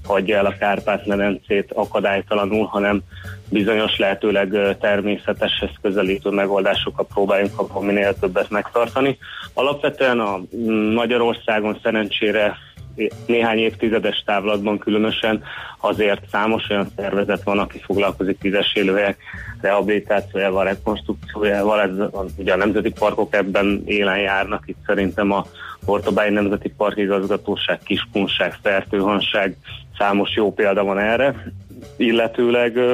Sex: male